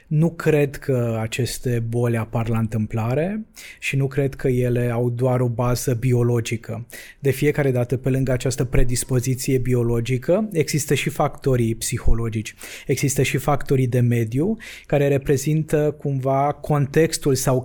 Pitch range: 120-145 Hz